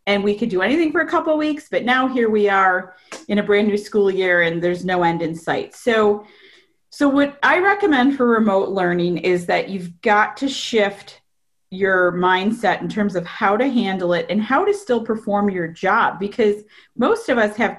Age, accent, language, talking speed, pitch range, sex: 30-49, American, English, 210 wpm, 185-240 Hz, female